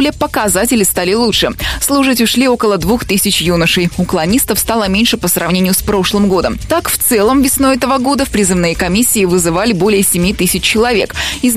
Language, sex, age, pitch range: Russian, female, 20-39, 180-240 Hz